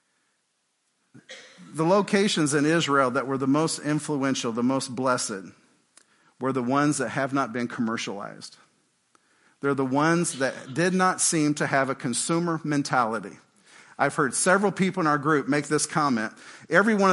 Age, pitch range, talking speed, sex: 50-69, 140-170 Hz, 155 wpm, male